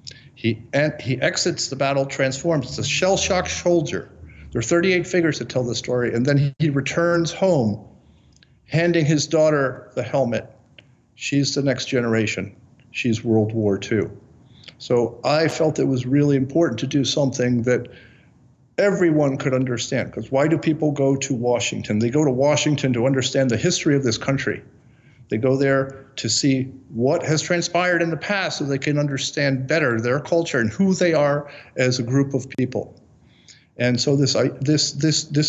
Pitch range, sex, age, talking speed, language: 125-150 Hz, male, 50-69, 170 wpm, English